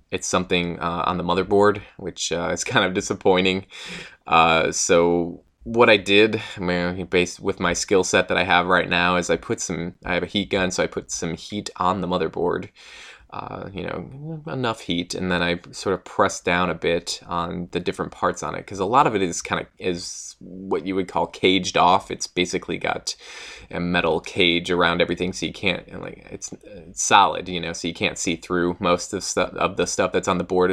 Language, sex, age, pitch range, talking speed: English, male, 20-39, 85-95 Hz, 215 wpm